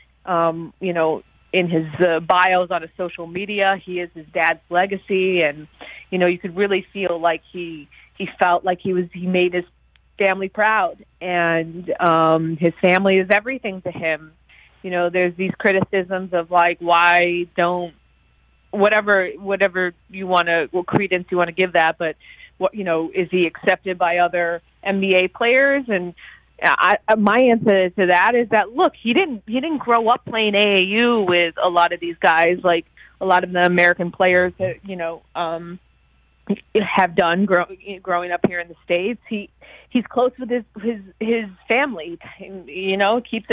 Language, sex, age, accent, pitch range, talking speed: English, female, 30-49, American, 175-205 Hz, 180 wpm